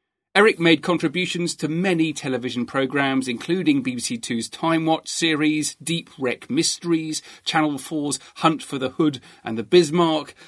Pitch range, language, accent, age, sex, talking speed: 135-175 Hz, English, British, 40-59, male, 145 wpm